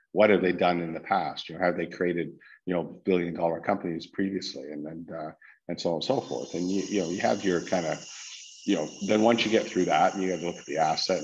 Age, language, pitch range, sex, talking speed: 50-69, English, 80-90 Hz, male, 270 wpm